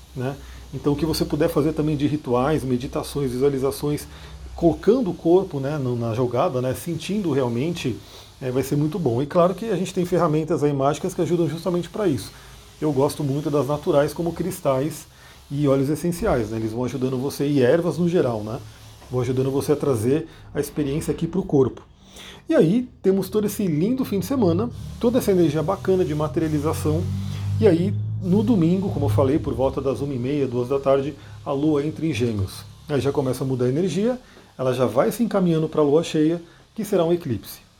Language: Portuguese